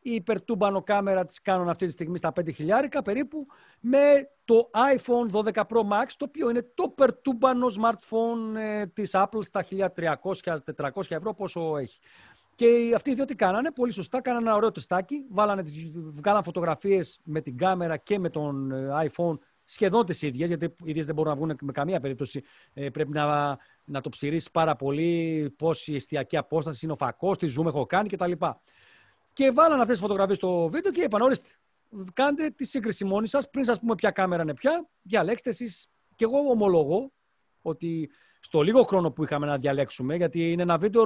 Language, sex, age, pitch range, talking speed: Greek, male, 40-59, 160-230 Hz, 175 wpm